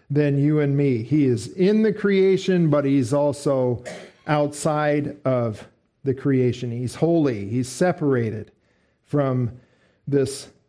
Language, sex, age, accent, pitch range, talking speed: English, male, 50-69, American, 135-160 Hz, 125 wpm